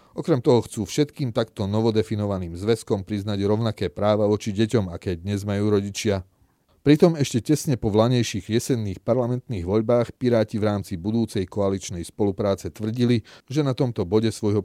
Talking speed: 150 wpm